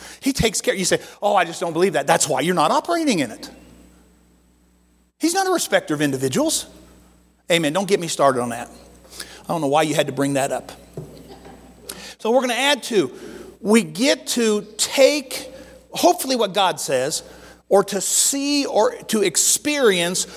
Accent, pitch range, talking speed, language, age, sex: American, 150-235 Hz, 180 wpm, English, 50-69, male